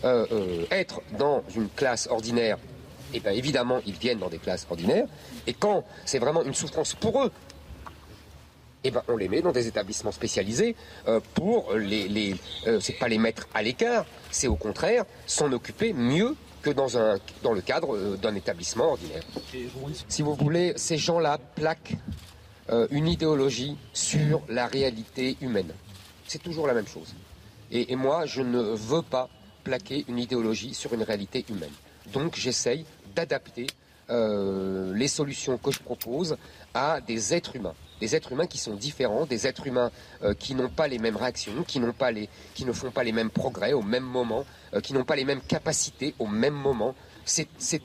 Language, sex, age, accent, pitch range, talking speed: French, male, 50-69, French, 110-150 Hz, 180 wpm